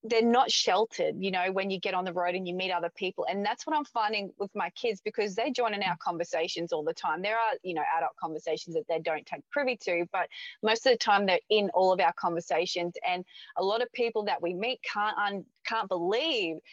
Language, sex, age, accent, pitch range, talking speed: English, female, 20-39, Australian, 180-225 Hz, 240 wpm